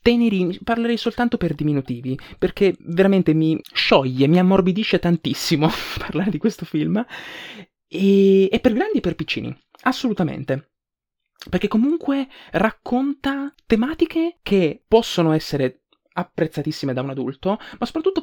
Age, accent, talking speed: 20-39, native, 120 wpm